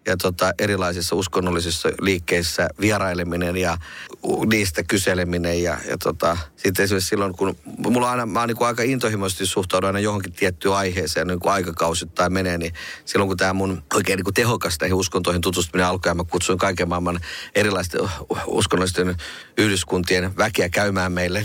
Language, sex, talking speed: Finnish, male, 145 wpm